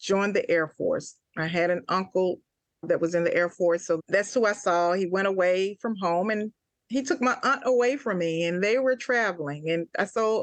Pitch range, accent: 170-220 Hz, American